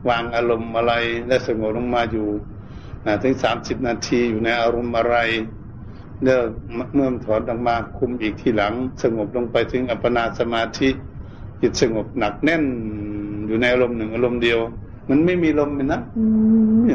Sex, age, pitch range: male, 60-79, 100-125 Hz